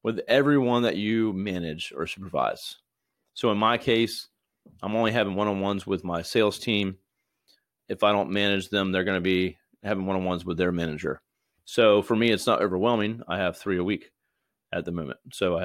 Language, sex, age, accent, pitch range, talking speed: English, male, 30-49, American, 95-115 Hz, 185 wpm